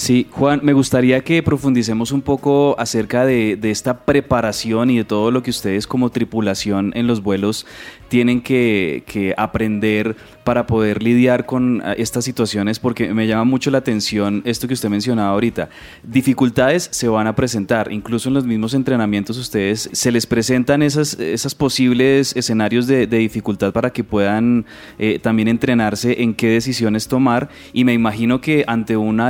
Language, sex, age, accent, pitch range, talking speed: Spanish, male, 20-39, Colombian, 110-125 Hz, 170 wpm